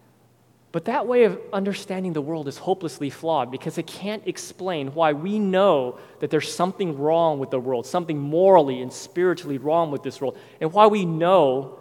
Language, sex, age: English, male, 30-49